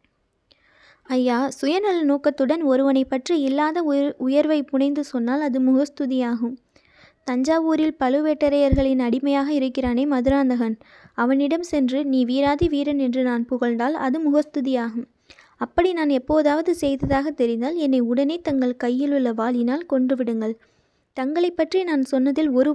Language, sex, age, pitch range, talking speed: Tamil, female, 20-39, 255-295 Hz, 120 wpm